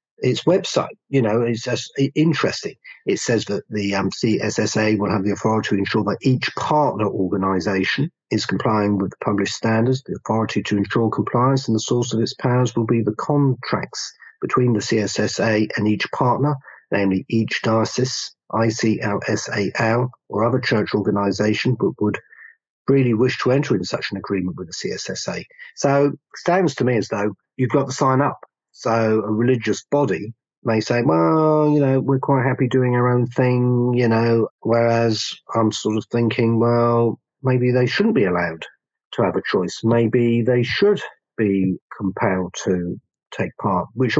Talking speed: 170 wpm